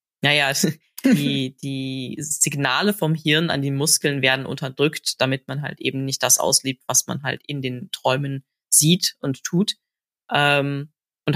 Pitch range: 140-165 Hz